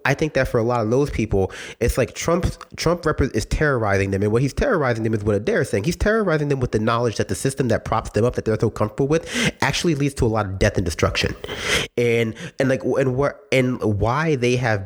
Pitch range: 105-130 Hz